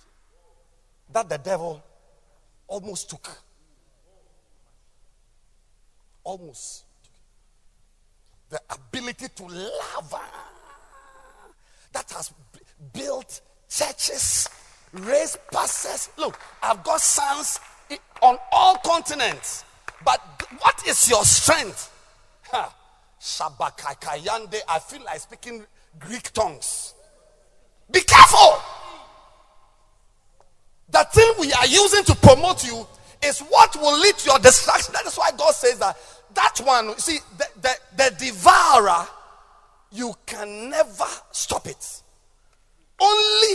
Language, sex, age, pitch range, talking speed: English, male, 50-69, 200-320 Hz, 100 wpm